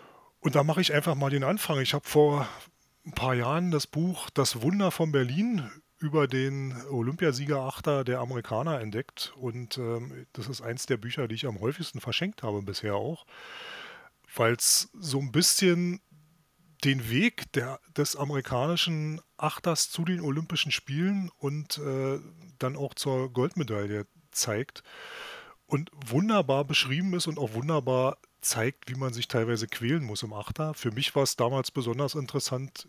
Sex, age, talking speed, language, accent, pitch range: male, 30-49, 155 wpm, German, German, 120-160 Hz